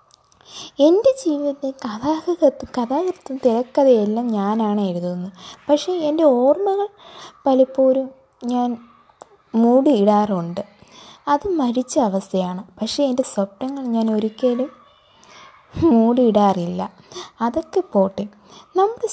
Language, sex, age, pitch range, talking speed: Malayalam, female, 20-39, 220-290 Hz, 80 wpm